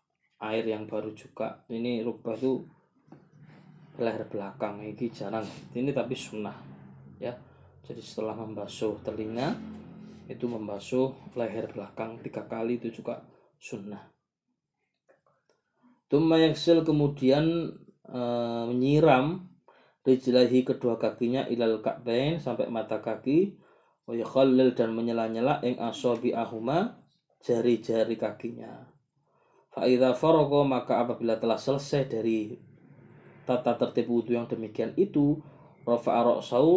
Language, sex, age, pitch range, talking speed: Malay, male, 20-39, 110-135 Hz, 105 wpm